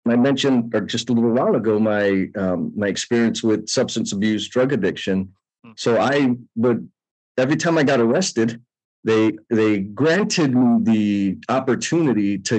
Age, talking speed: 40-59, 155 wpm